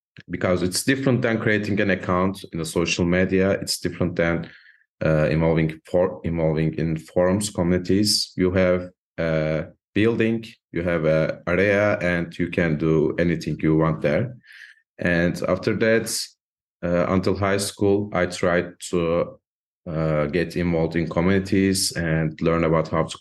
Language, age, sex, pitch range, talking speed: English, 30-49, male, 80-100 Hz, 145 wpm